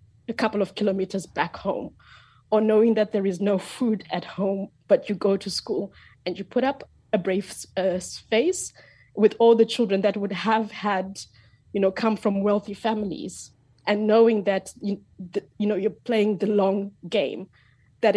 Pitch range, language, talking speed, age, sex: 190-220 Hz, English, 180 wpm, 20-39, female